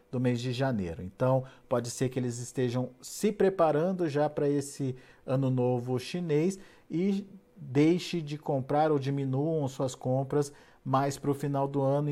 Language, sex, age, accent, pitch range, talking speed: Portuguese, male, 50-69, Brazilian, 130-165 Hz, 160 wpm